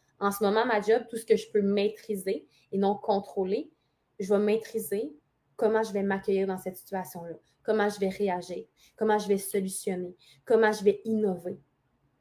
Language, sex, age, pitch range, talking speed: French, female, 20-39, 195-220 Hz, 175 wpm